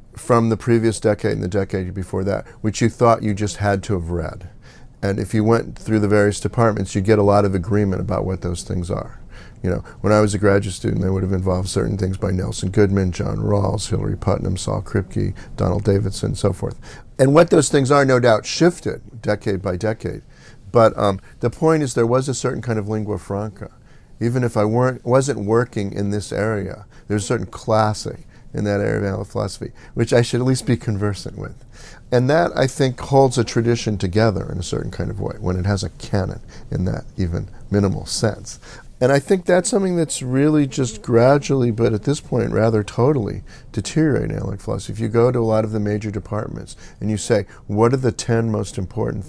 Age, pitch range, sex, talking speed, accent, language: 50-69, 100-125 Hz, male, 215 wpm, American, English